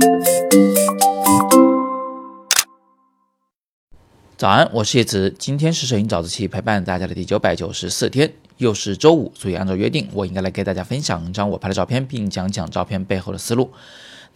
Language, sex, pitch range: Chinese, male, 95-125 Hz